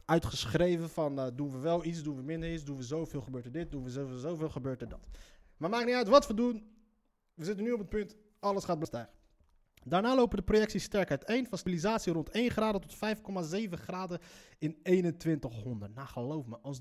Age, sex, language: 30-49, male, Dutch